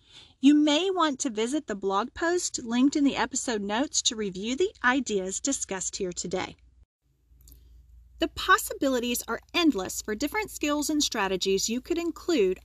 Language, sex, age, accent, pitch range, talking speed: English, female, 40-59, American, 205-300 Hz, 150 wpm